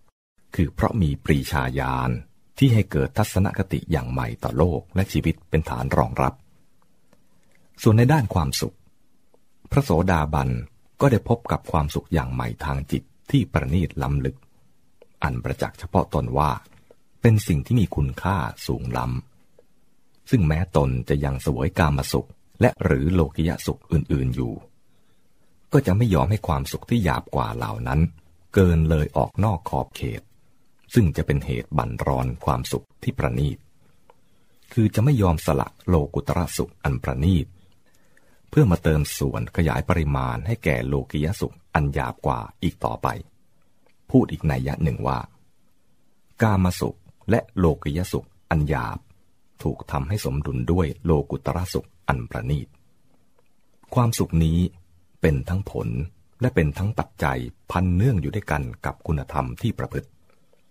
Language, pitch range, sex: English, 70-95 Hz, male